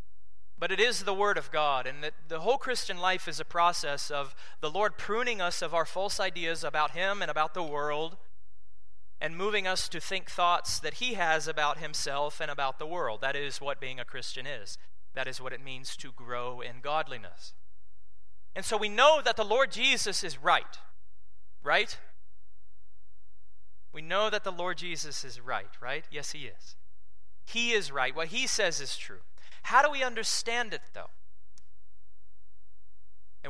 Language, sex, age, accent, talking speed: English, male, 30-49, American, 175 wpm